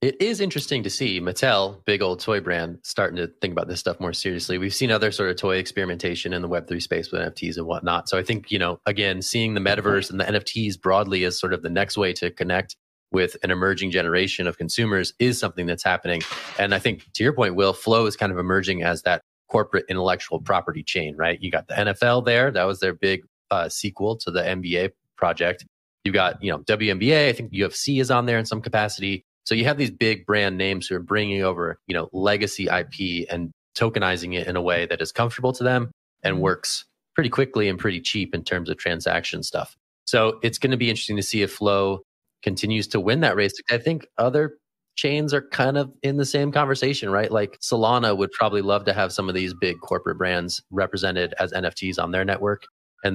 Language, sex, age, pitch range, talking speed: English, male, 30-49, 90-115 Hz, 220 wpm